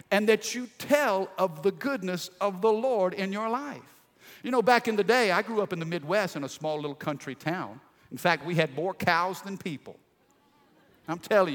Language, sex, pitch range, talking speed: English, male, 155-220 Hz, 215 wpm